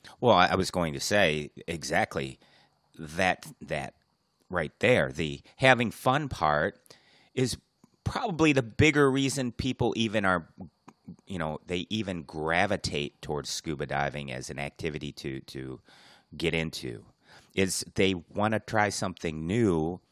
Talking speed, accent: 135 wpm, American